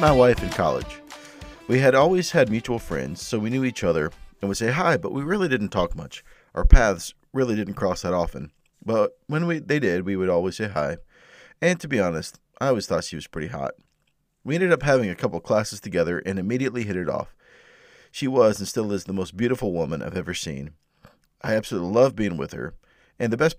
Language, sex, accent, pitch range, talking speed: English, male, American, 95-135 Hz, 220 wpm